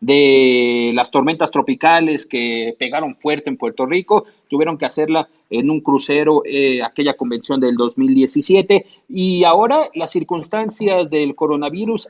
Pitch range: 150-210 Hz